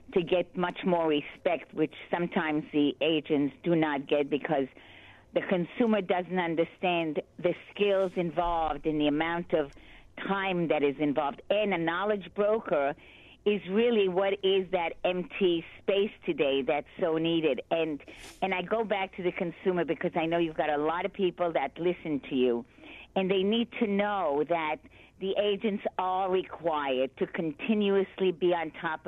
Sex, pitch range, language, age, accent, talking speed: female, 165-205 Hz, English, 50-69, American, 165 wpm